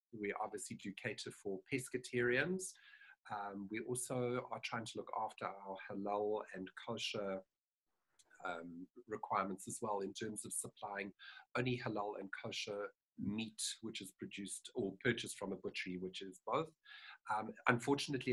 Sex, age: male, 50-69